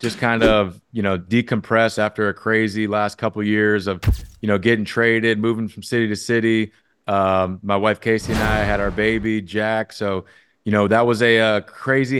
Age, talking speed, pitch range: 30-49, 195 wpm, 100-115 Hz